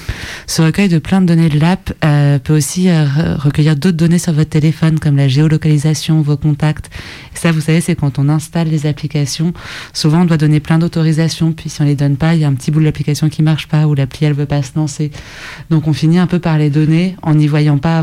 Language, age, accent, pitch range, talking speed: French, 20-39, French, 145-165 Hz, 260 wpm